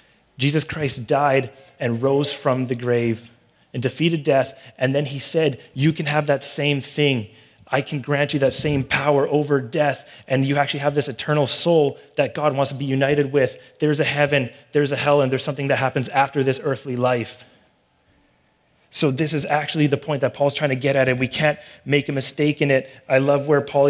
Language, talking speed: English, 210 wpm